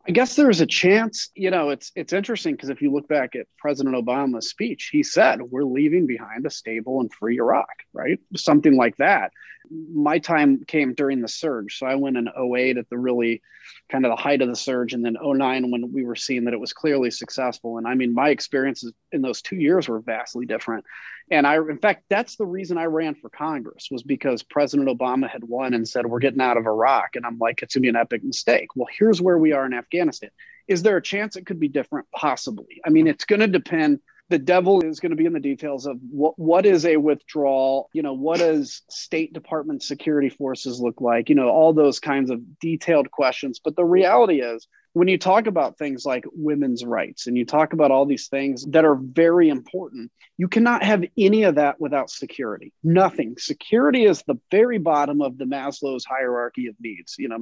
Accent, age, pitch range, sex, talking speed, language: American, 30-49, 125-180 Hz, male, 220 wpm, English